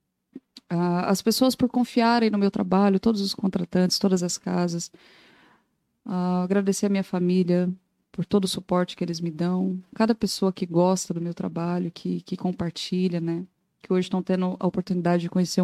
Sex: female